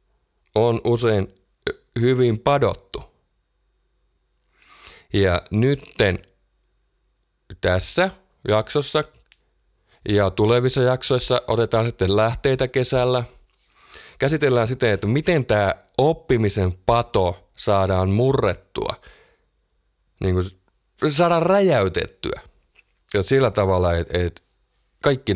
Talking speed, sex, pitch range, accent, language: 80 wpm, male, 95-125 Hz, native, Finnish